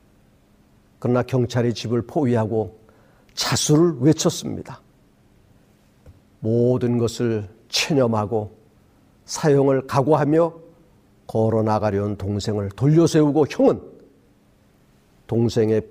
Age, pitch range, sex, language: 50-69, 105-140 Hz, male, Korean